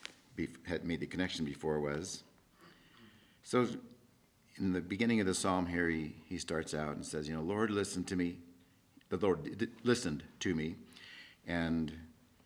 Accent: American